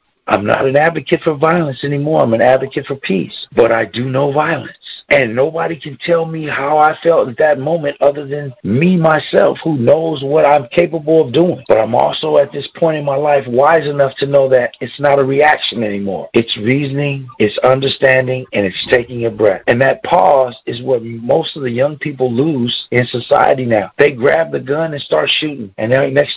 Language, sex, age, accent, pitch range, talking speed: English, male, 50-69, American, 130-165 Hz, 205 wpm